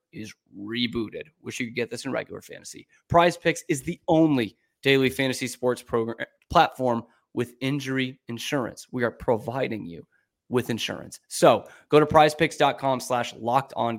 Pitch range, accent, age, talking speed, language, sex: 120-150 Hz, American, 30-49, 155 wpm, English, male